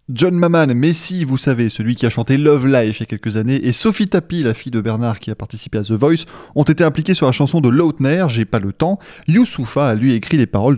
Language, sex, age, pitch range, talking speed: French, male, 20-39, 115-165 Hz, 260 wpm